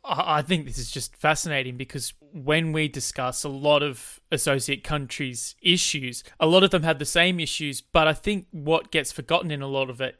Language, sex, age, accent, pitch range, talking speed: English, male, 20-39, Australian, 140-165 Hz, 205 wpm